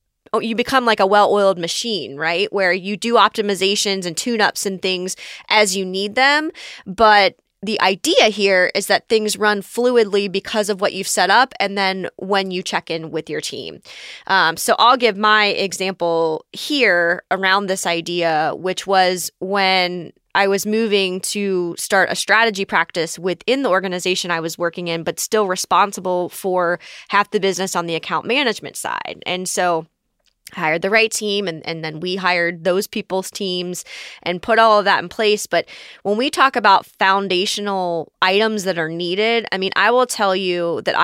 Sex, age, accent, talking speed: female, 20-39, American, 175 wpm